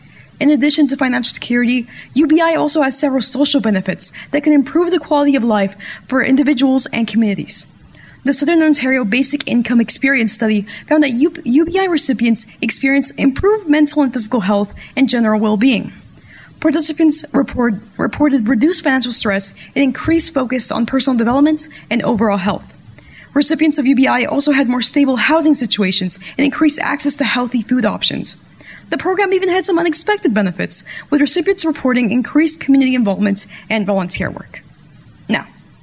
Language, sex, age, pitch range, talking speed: English, female, 20-39, 230-300 Hz, 150 wpm